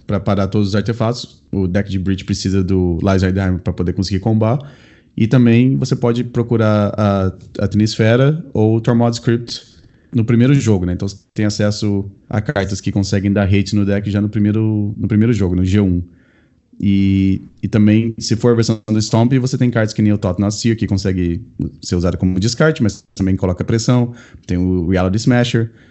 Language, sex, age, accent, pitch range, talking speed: Portuguese, male, 20-39, Brazilian, 95-120 Hz, 190 wpm